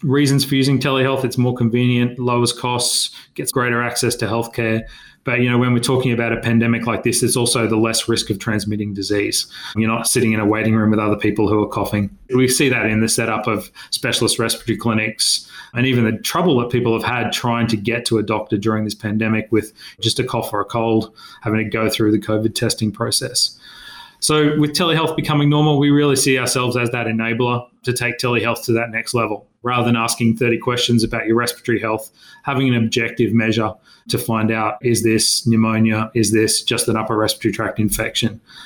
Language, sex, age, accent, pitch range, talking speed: English, male, 30-49, Australian, 110-125 Hz, 210 wpm